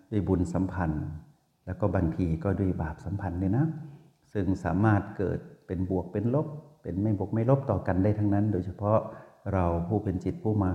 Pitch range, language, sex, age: 95-110 Hz, Thai, male, 60-79